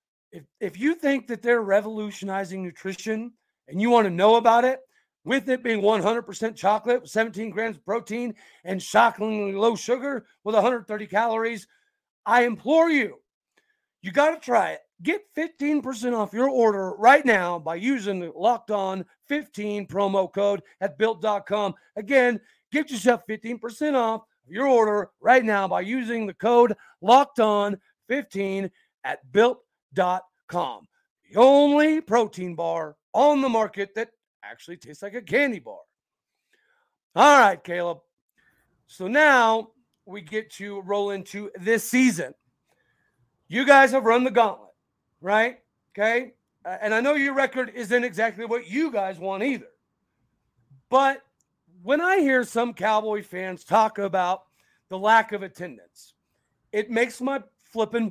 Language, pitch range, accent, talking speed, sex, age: English, 200-255 Hz, American, 140 wpm, male, 40-59